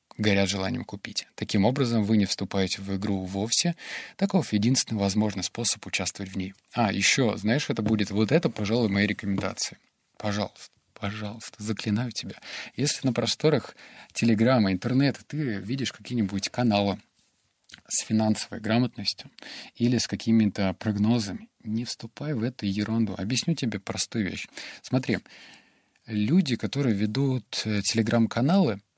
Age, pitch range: 20-39, 100-125 Hz